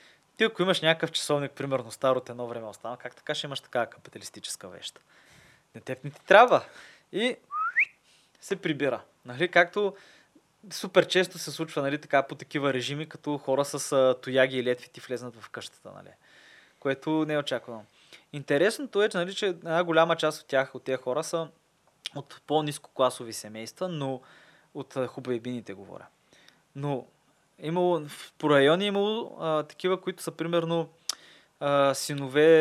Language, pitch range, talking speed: Bulgarian, 130-165 Hz, 150 wpm